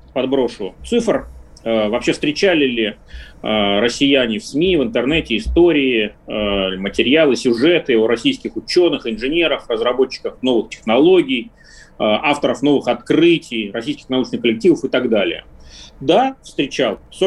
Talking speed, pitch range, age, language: 120 wpm, 110-160 Hz, 30-49, Russian